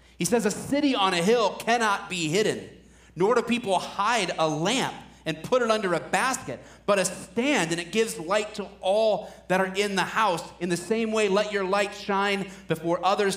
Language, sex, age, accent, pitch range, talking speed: English, male, 30-49, American, 190-260 Hz, 205 wpm